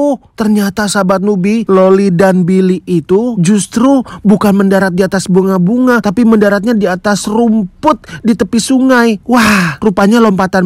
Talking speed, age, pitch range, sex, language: 135 wpm, 30-49, 150-210 Hz, male, Indonesian